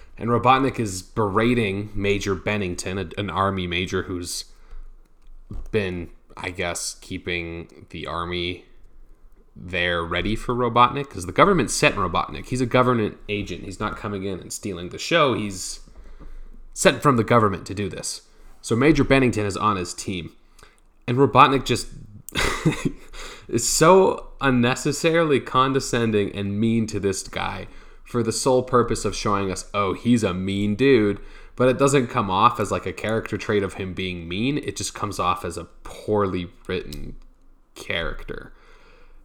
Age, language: 20-39, English